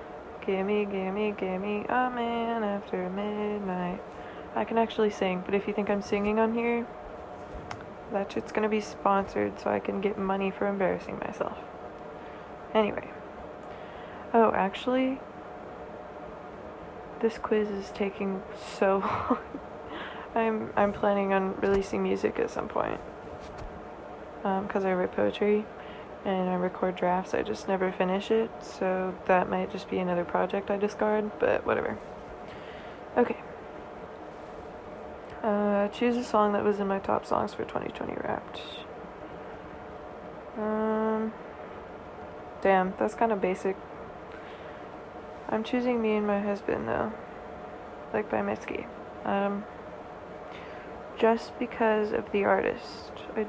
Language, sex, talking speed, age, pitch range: English, female, 125 wpm, 20-39, 190-220 Hz